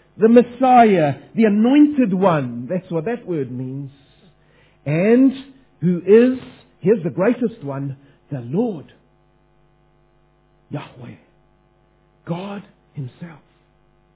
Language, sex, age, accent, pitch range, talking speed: English, male, 50-69, South African, 160-240 Hz, 95 wpm